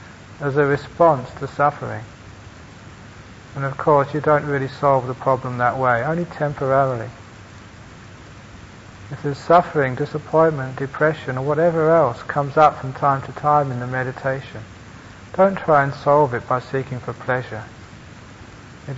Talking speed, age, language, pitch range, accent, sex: 140 wpm, 40-59, English, 110-140 Hz, British, male